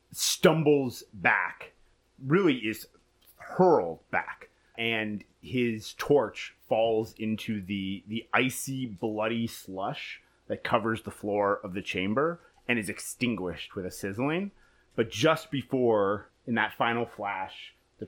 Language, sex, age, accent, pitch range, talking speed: English, male, 30-49, American, 100-125 Hz, 125 wpm